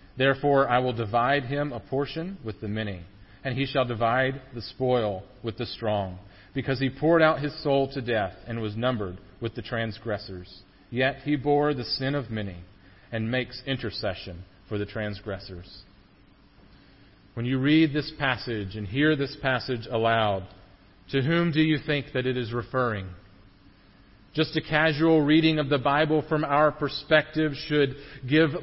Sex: male